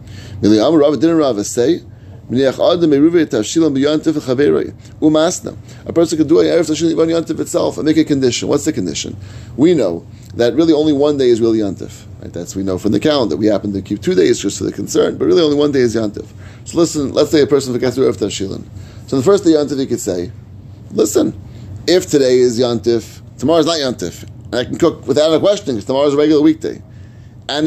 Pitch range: 105-155 Hz